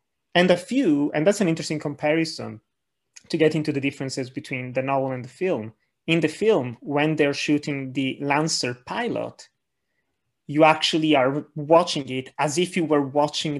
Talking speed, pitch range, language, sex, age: 170 wpm, 135-160 Hz, English, male, 30-49